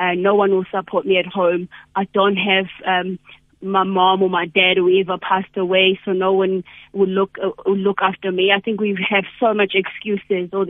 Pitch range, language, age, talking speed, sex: 185-210 Hz, English, 20-39, 220 wpm, female